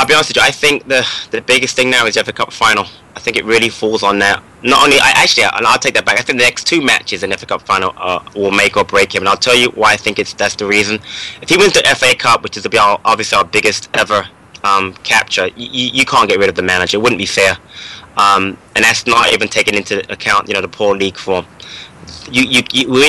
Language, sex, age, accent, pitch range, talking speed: English, male, 20-39, British, 110-130 Hz, 275 wpm